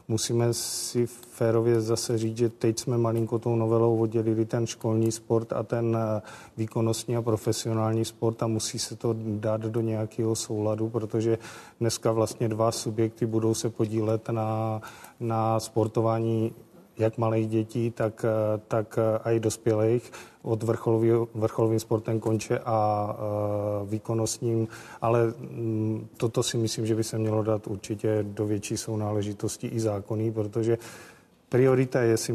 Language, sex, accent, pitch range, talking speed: Czech, male, native, 110-115 Hz, 145 wpm